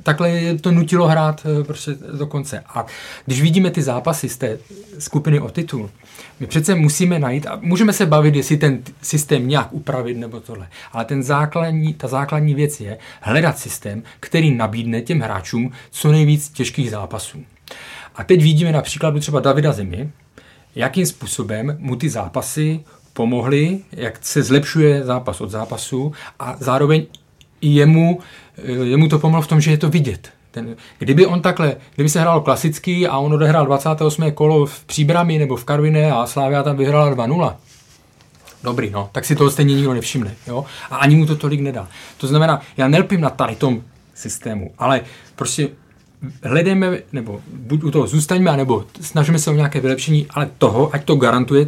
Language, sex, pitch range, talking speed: Czech, male, 125-155 Hz, 170 wpm